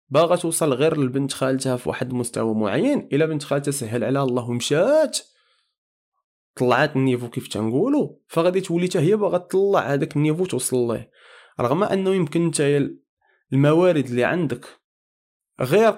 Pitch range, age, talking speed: 125-155 Hz, 20-39, 135 wpm